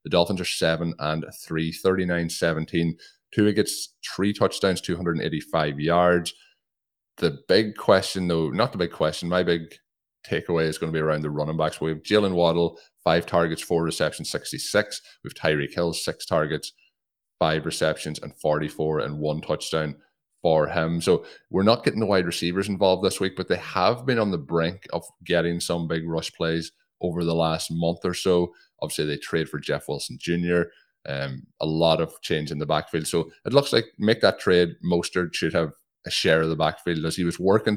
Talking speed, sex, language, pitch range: 185 wpm, male, English, 80-85 Hz